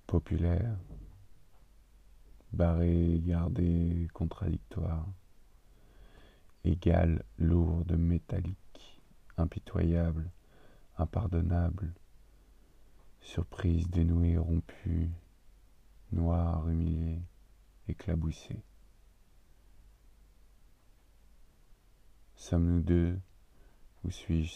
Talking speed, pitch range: 45 wpm, 80-90 Hz